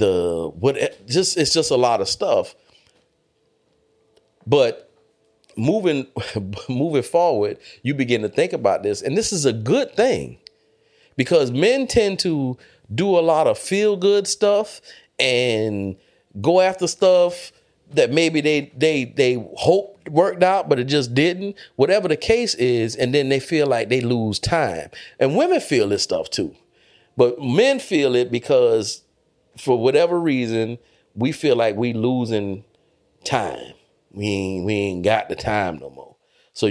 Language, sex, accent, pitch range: English, male, American, 120-200 Hz